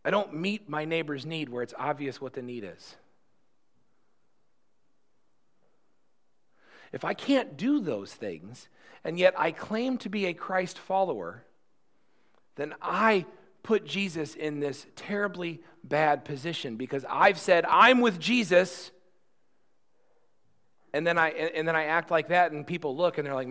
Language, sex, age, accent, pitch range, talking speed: English, male, 40-59, American, 145-185 Hz, 150 wpm